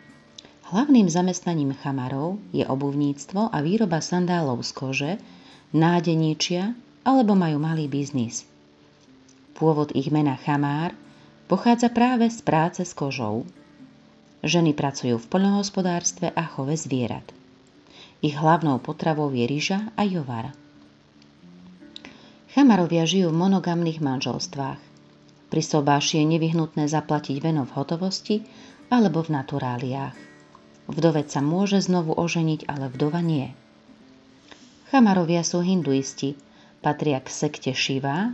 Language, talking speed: Slovak, 110 wpm